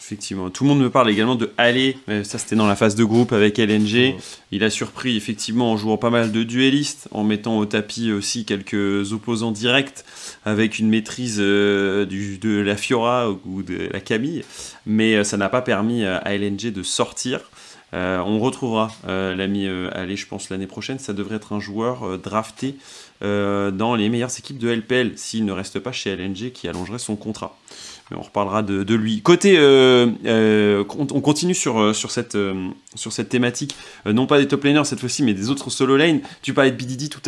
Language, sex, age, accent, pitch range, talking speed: French, male, 30-49, French, 105-130 Hz, 195 wpm